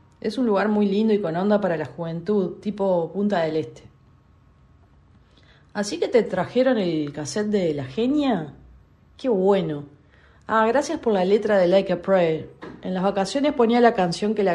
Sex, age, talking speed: female, 40-59, 175 wpm